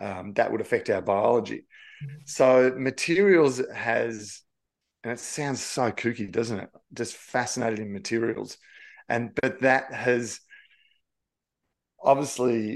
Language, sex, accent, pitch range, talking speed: English, male, Australian, 110-140 Hz, 115 wpm